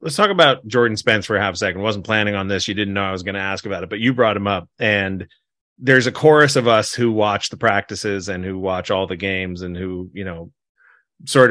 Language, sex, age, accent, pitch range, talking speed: English, male, 30-49, American, 95-125 Hz, 260 wpm